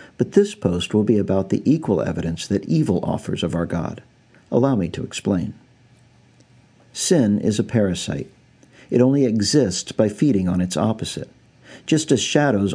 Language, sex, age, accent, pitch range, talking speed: English, male, 50-69, American, 100-130 Hz, 160 wpm